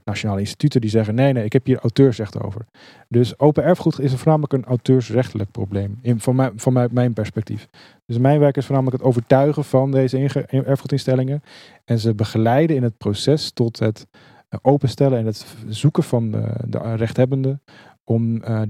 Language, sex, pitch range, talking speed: Dutch, male, 110-140 Hz, 175 wpm